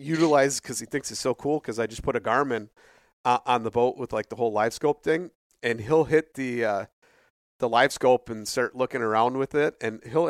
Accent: American